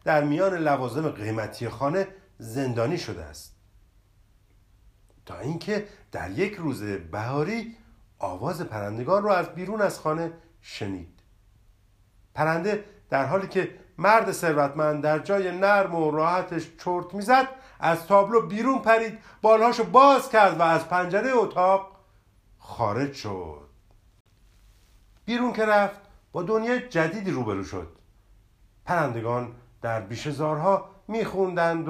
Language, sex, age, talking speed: Persian, male, 50-69, 115 wpm